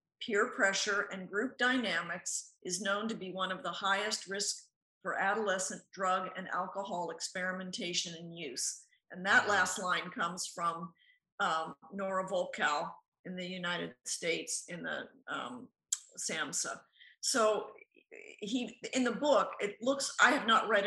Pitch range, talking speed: 185-230 Hz, 145 wpm